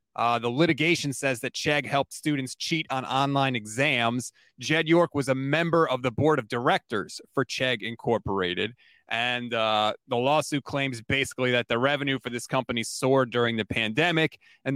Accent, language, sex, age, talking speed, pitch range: American, English, male, 30-49, 170 wpm, 120-150 Hz